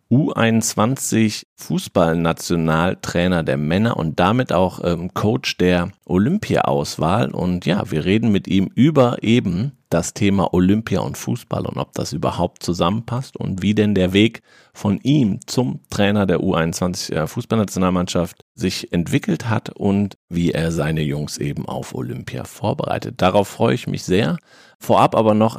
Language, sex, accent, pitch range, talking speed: German, male, German, 90-110 Hz, 145 wpm